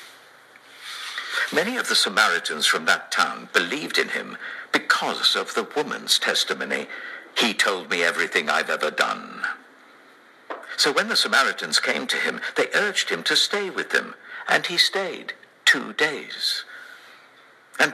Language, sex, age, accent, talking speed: English, male, 60-79, British, 140 wpm